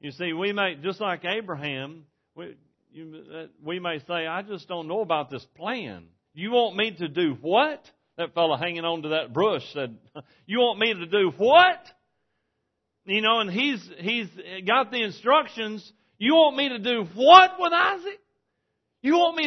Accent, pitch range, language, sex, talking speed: American, 145-205 Hz, English, male, 180 wpm